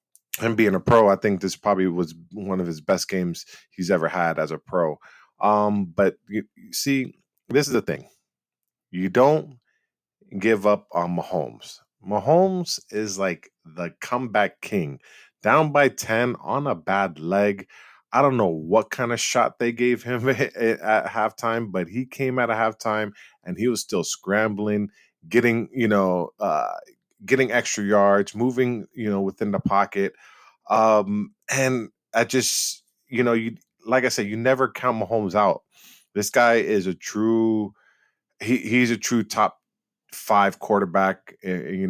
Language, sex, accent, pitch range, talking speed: English, male, American, 95-120 Hz, 160 wpm